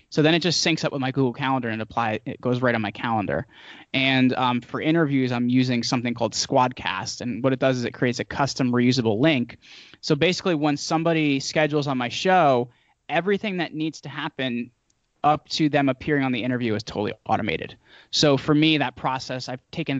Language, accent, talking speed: English, American, 205 wpm